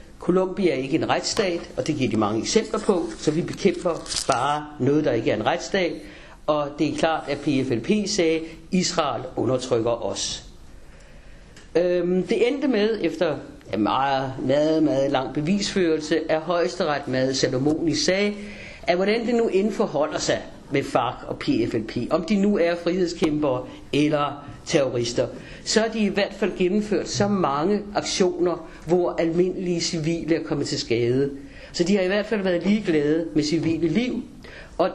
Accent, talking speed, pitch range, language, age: native, 165 wpm, 150-200 Hz, Danish, 60-79